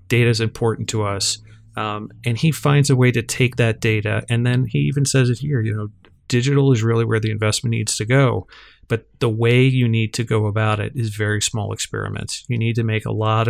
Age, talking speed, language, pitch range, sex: 40-59, 230 wpm, English, 110-125 Hz, male